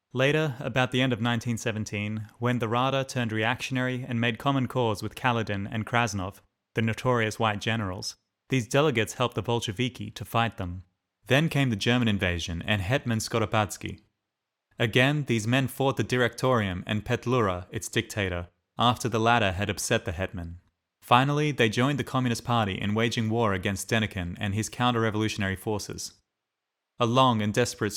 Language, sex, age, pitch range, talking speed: English, male, 20-39, 100-120 Hz, 160 wpm